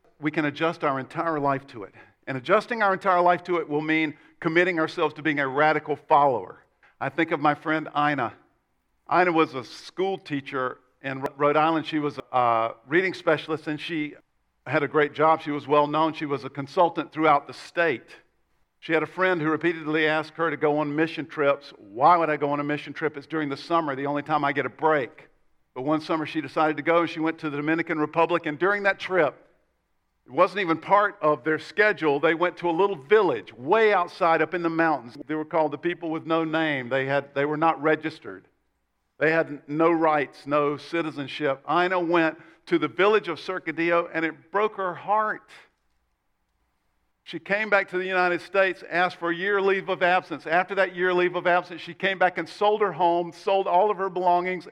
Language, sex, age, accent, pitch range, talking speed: English, male, 50-69, American, 150-180 Hz, 210 wpm